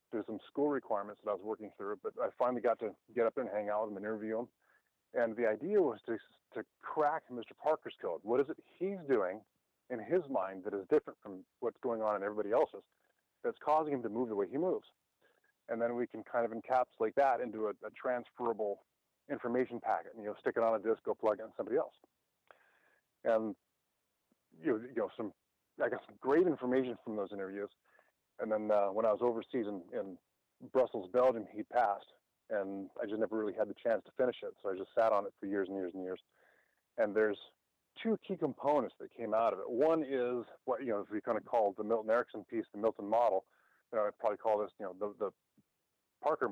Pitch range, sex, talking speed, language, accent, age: 105-140 Hz, male, 225 wpm, English, American, 30-49